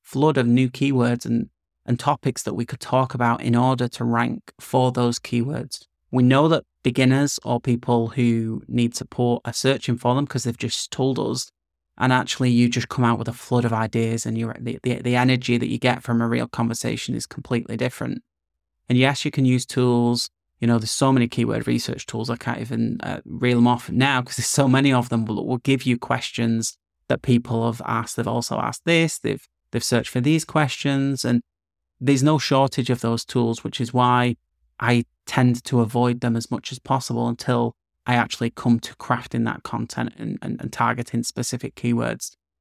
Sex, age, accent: male, 30-49, British